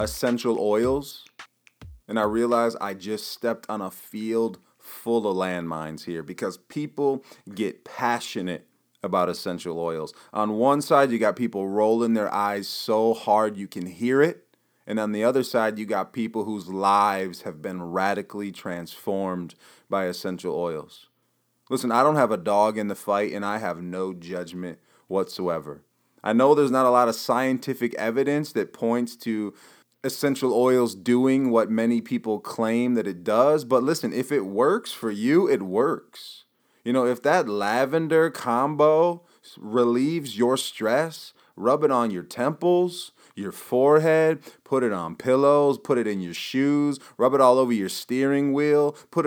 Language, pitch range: English, 100-140 Hz